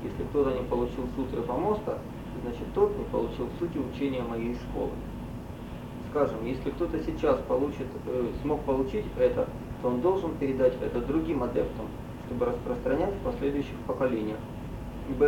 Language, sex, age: Russian, male, 20-39